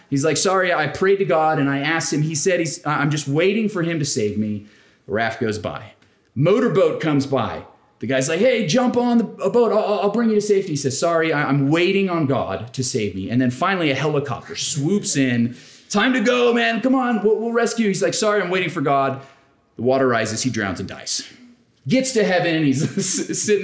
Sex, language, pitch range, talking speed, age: male, English, 130-215 Hz, 225 wpm, 30-49